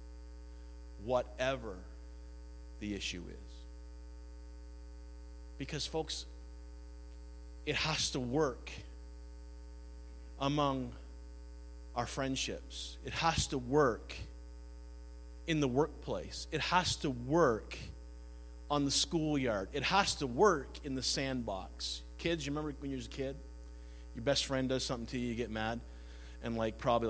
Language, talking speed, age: English, 120 wpm, 40-59